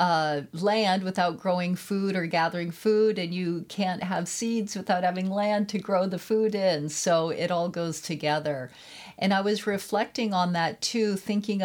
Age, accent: 40-59, American